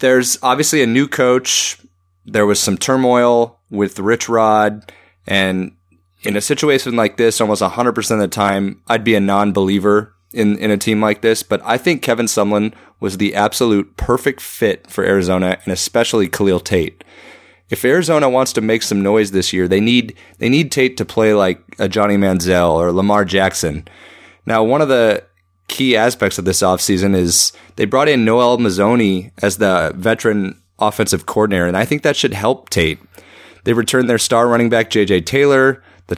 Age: 30-49